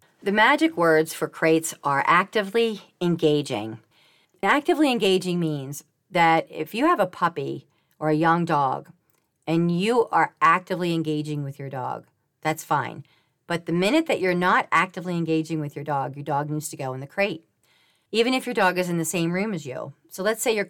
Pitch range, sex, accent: 150-185 Hz, female, American